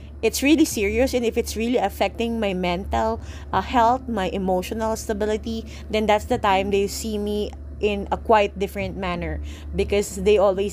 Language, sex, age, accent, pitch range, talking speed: English, female, 20-39, Filipino, 180-240 Hz, 170 wpm